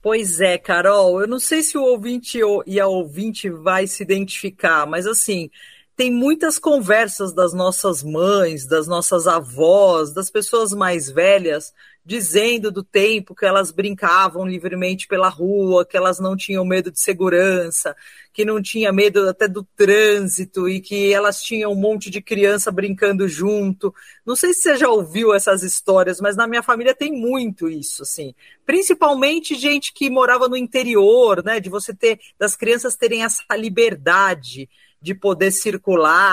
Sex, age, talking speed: female, 40-59, 160 wpm